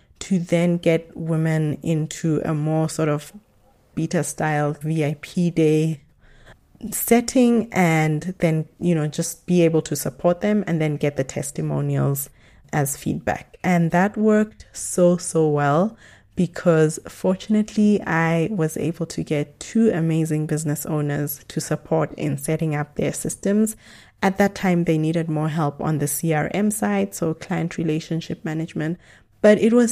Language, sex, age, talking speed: English, female, 20-39, 145 wpm